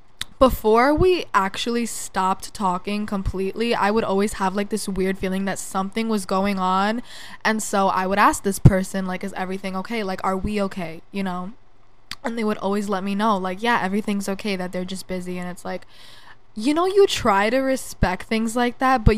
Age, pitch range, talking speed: 10-29, 185-220 Hz, 200 wpm